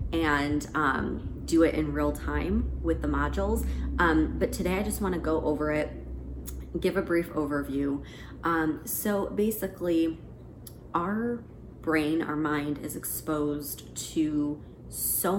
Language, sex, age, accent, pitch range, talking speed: English, female, 30-49, American, 145-170 Hz, 135 wpm